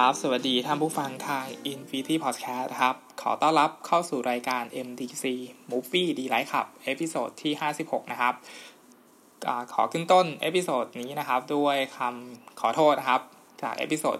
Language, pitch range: Thai, 120-150 Hz